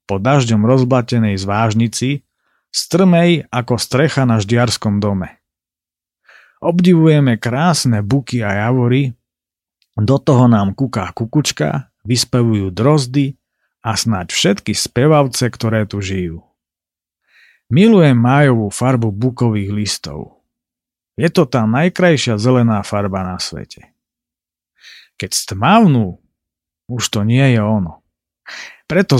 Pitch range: 105-135 Hz